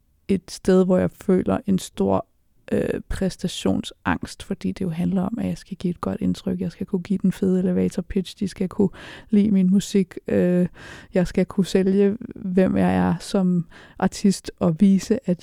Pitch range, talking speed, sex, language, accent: 180-205 Hz, 185 wpm, female, Danish, native